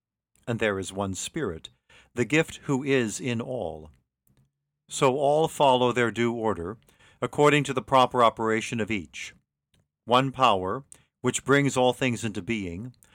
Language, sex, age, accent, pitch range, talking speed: English, male, 40-59, American, 110-135 Hz, 145 wpm